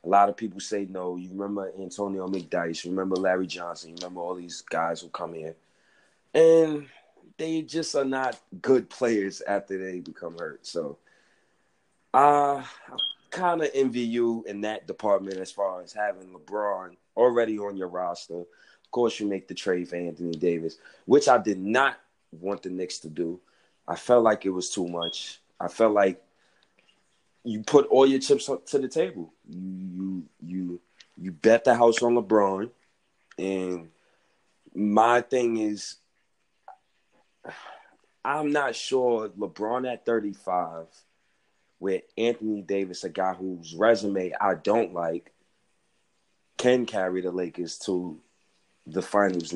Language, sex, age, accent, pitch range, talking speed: English, male, 30-49, American, 90-115 Hz, 150 wpm